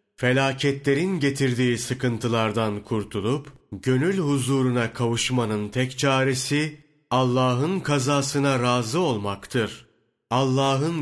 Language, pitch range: Turkish, 115-145 Hz